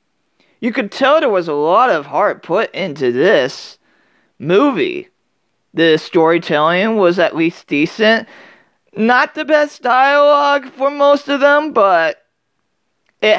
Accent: American